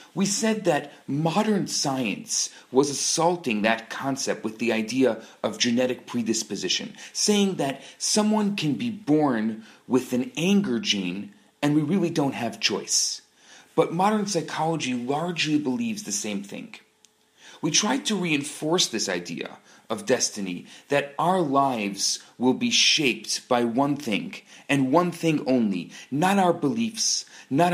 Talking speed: 140 wpm